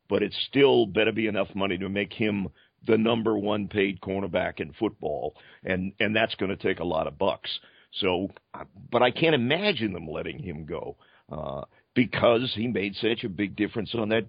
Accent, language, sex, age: American, English, male, 50-69